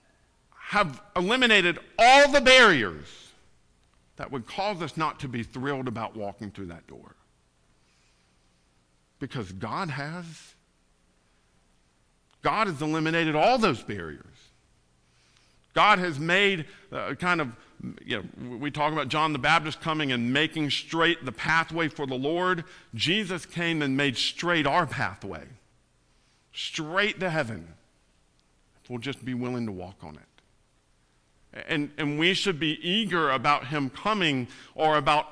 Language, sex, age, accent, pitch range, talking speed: English, male, 50-69, American, 100-165 Hz, 135 wpm